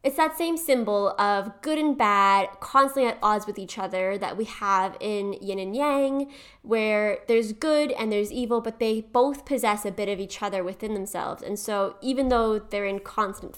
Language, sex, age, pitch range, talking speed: English, female, 20-39, 200-265 Hz, 200 wpm